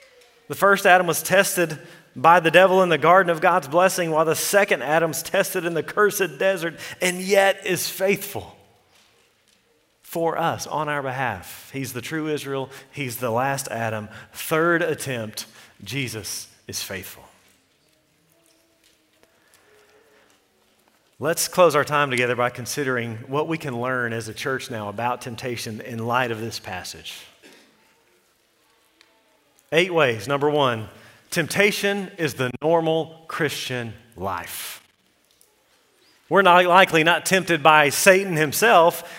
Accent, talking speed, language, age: American, 130 wpm, English, 40-59